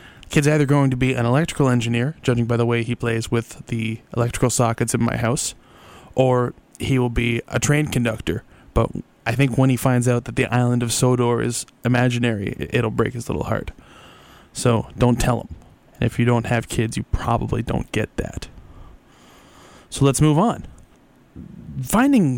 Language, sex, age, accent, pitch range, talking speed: English, male, 20-39, American, 120-150 Hz, 180 wpm